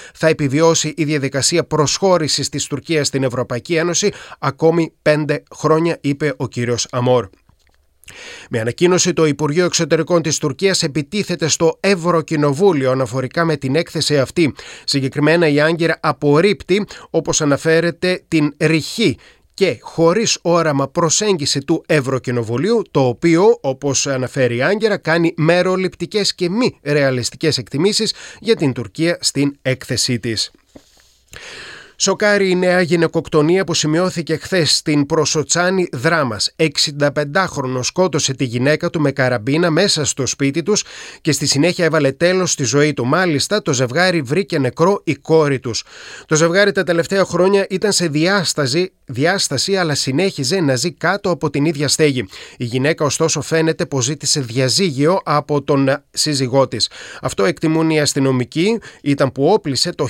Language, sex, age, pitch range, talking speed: Greek, male, 30-49, 140-175 Hz, 140 wpm